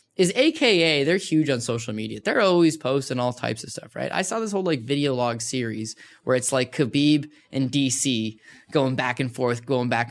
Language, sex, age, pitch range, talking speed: English, male, 10-29, 130-180 Hz, 210 wpm